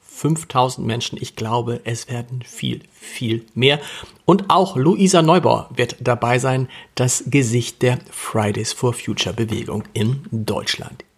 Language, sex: German, male